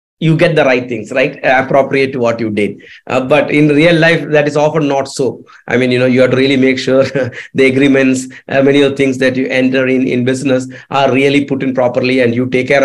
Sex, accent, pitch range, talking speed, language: male, Indian, 135-195 Hz, 245 wpm, English